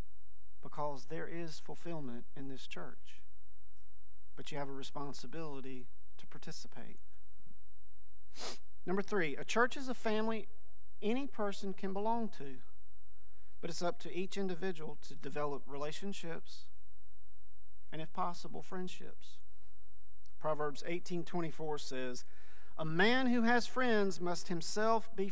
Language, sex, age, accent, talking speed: English, male, 40-59, American, 120 wpm